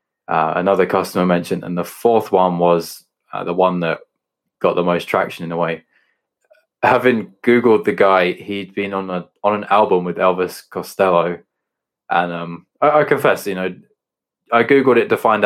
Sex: male